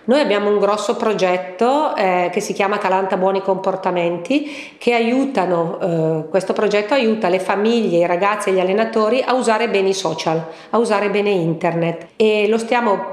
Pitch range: 185-235 Hz